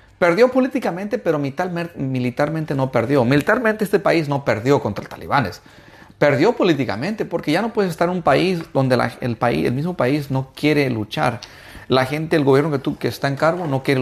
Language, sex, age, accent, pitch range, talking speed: English, male, 40-59, Mexican, 110-145 Hz, 195 wpm